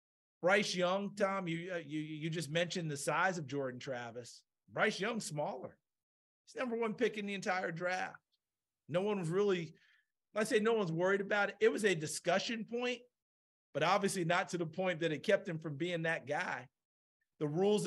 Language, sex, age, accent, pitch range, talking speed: English, male, 50-69, American, 170-210 Hz, 190 wpm